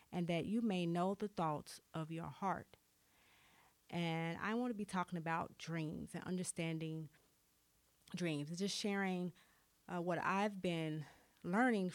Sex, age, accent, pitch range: female, 30-49, American, 160-185 Hz